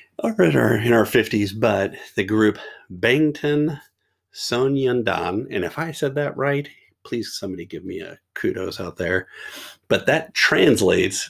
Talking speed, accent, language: 145 wpm, American, English